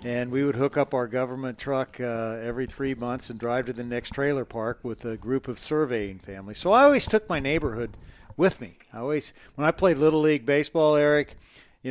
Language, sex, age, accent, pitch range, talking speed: English, male, 50-69, American, 125-150 Hz, 215 wpm